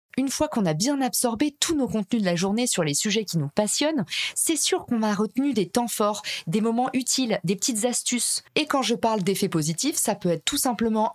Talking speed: 230 wpm